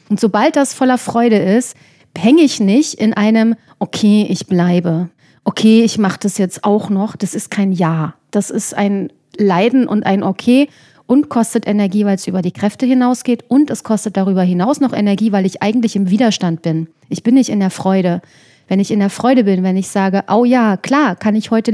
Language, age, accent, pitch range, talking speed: German, 40-59, German, 195-245 Hz, 205 wpm